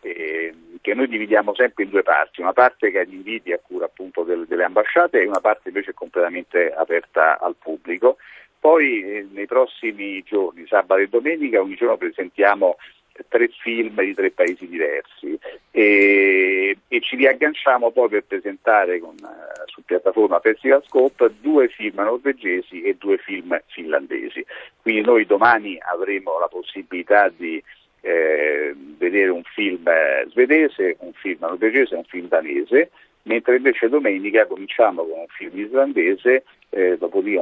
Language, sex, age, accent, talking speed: Italian, male, 50-69, native, 145 wpm